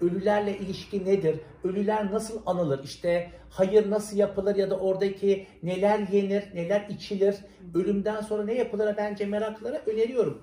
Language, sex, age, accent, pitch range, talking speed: Turkish, male, 60-79, native, 170-215 Hz, 140 wpm